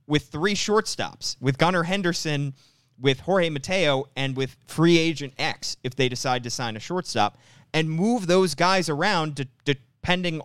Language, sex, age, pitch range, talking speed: English, male, 30-49, 120-150 Hz, 155 wpm